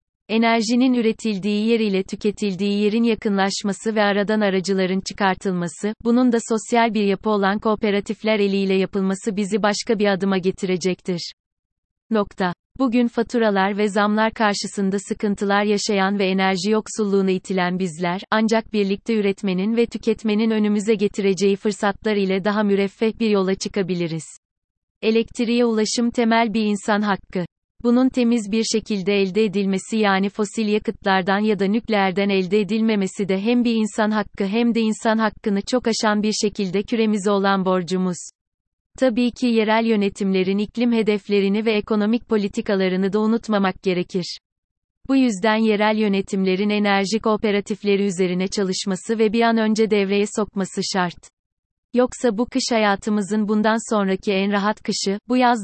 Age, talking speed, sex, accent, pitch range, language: 30-49, 135 wpm, female, native, 195-220 Hz, Turkish